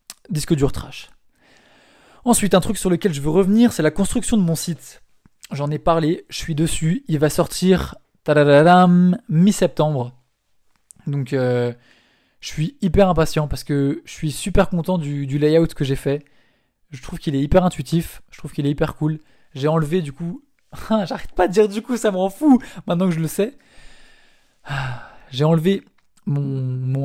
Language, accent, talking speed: French, French, 175 wpm